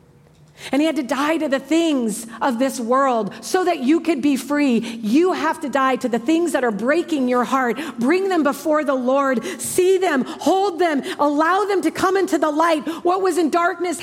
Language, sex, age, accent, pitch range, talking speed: English, female, 40-59, American, 265-365 Hz, 210 wpm